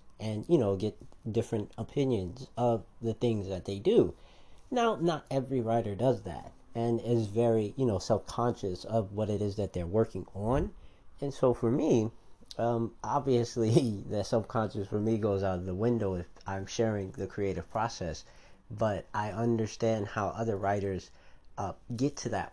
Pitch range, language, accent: 95-120 Hz, English, American